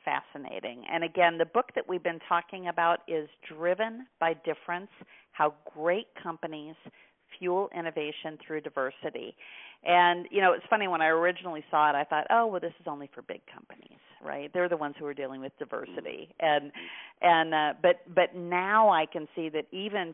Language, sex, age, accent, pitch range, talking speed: English, female, 50-69, American, 150-175 Hz, 180 wpm